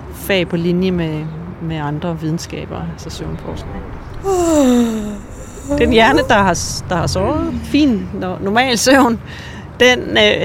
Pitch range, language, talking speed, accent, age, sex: 170-210 Hz, Danish, 115 wpm, native, 30-49, female